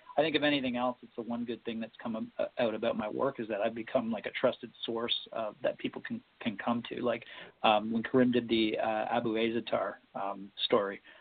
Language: English